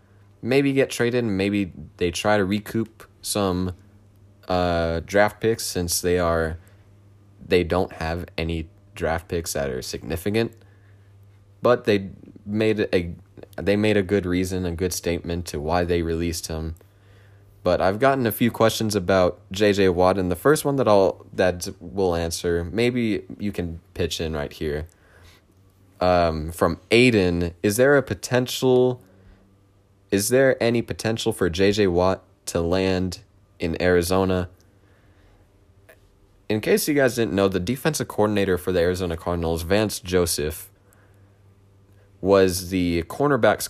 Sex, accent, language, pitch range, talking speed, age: male, American, English, 90-105 Hz, 140 wpm, 20-39